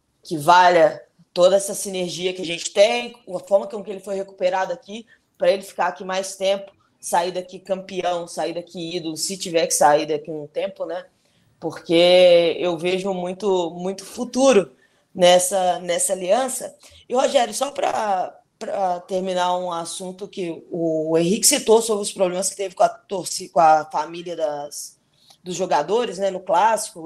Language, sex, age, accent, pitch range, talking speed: Portuguese, female, 20-39, Brazilian, 175-200 Hz, 165 wpm